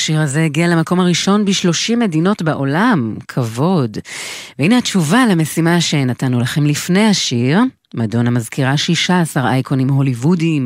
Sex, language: female, Hebrew